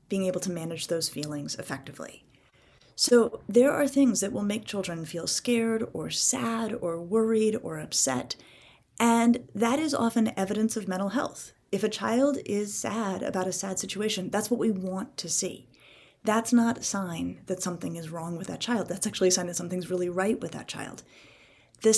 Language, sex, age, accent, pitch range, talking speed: English, female, 30-49, American, 175-225 Hz, 190 wpm